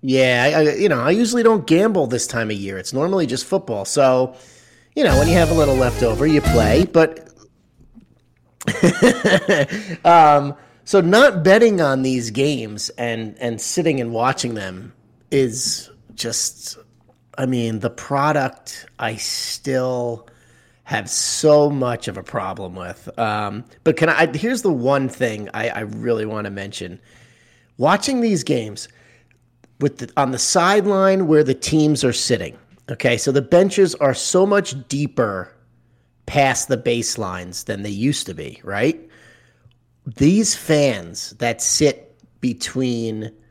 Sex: male